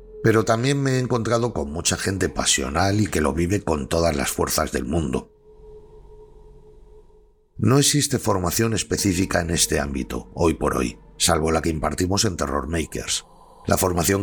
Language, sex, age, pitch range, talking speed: Spanish, male, 60-79, 85-115 Hz, 160 wpm